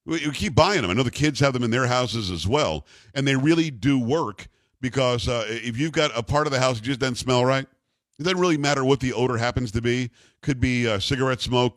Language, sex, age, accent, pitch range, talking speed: English, male, 50-69, American, 120-145 Hz, 255 wpm